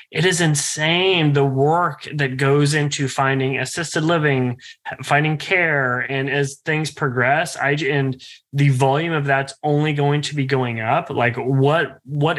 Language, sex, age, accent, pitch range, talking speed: English, male, 20-39, American, 130-155 Hz, 155 wpm